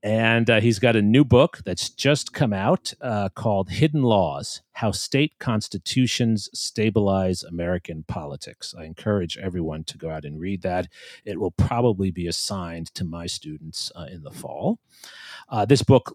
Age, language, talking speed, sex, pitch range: 40-59, English, 165 wpm, male, 85-115 Hz